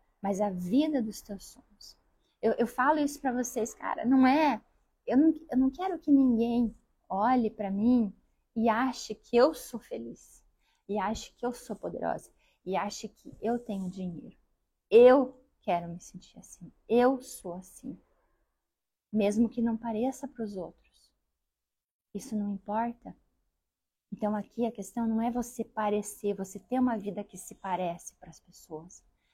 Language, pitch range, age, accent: Portuguese, 205-255 Hz, 20-39, Brazilian